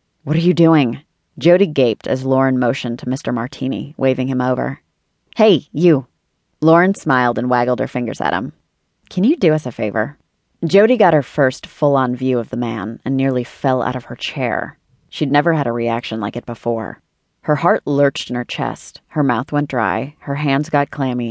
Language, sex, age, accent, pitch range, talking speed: English, female, 30-49, American, 120-150 Hz, 195 wpm